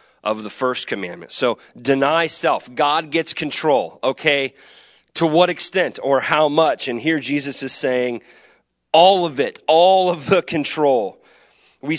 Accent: American